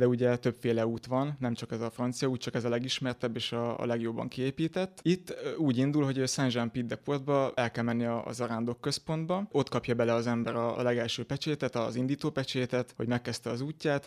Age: 20-39